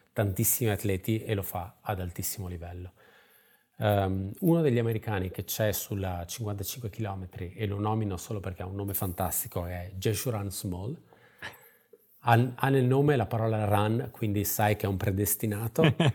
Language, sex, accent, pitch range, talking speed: Italian, male, native, 95-110 Hz, 150 wpm